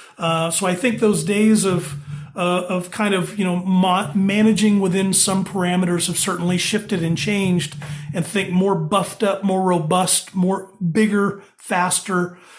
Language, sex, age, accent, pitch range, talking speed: English, male, 40-59, American, 170-205 Hz, 155 wpm